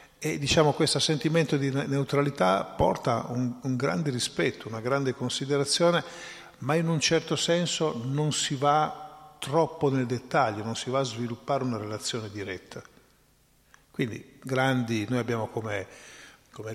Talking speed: 140 wpm